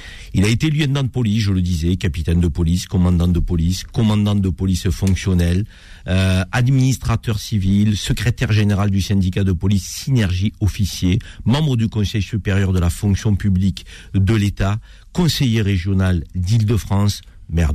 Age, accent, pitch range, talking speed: 50-69, French, 90-115 Hz, 150 wpm